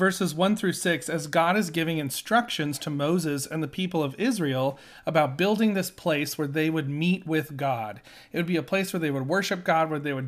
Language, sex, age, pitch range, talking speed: English, male, 40-59, 150-195 Hz, 230 wpm